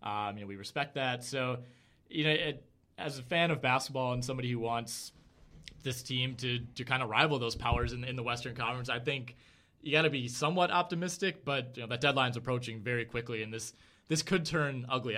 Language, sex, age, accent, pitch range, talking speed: English, male, 20-39, American, 115-140 Hz, 220 wpm